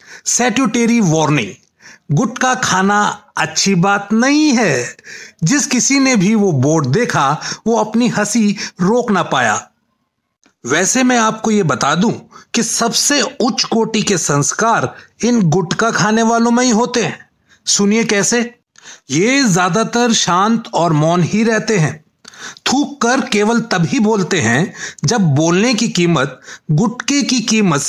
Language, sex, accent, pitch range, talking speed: Hindi, male, native, 185-235 Hz, 140 wpm